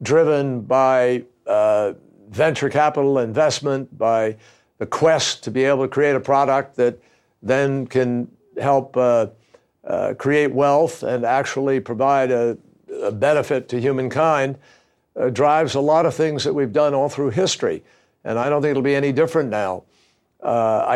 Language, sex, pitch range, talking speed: English, male, 130-155 Hz, 155 wpm